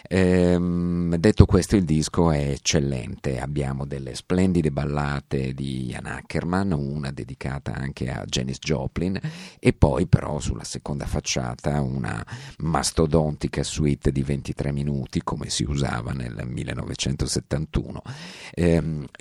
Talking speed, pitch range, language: 115 wpm, 70-85 Hz, Italian